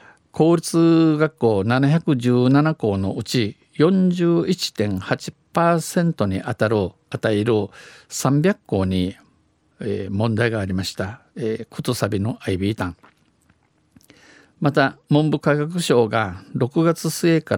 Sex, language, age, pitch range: male, Japanese, 50-69, 110-145 Hz